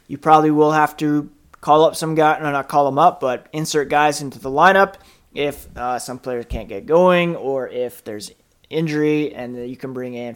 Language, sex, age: English, male, 20-39